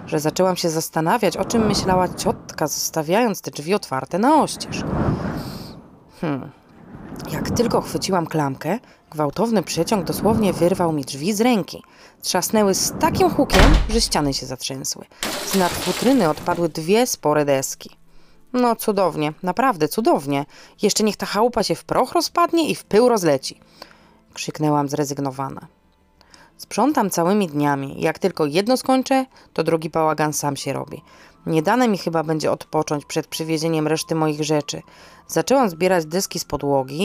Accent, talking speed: native, 145 wpm